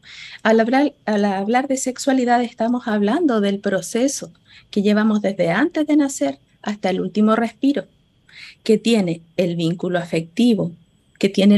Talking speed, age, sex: 140 wpm, 50-69, female